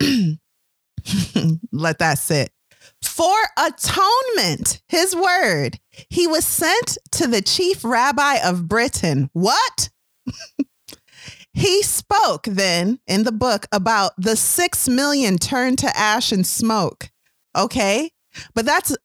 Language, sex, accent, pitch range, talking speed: English, female, American, 190-290 Hz, 110 wpm